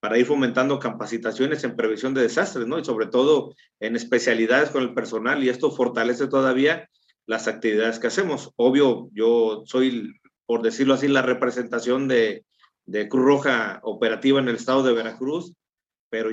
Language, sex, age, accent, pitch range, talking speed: Spanish, male, 40-59, Mexican, 115-135 Hz, 160 wpm